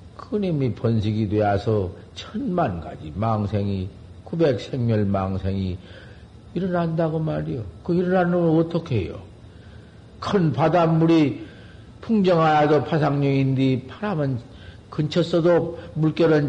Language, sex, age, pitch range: Korean, male, 50-69, 100-155 Hz